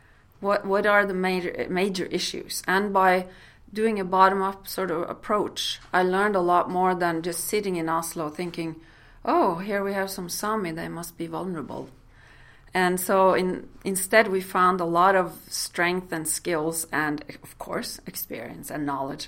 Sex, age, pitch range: female, 40-59, 150-185 Hz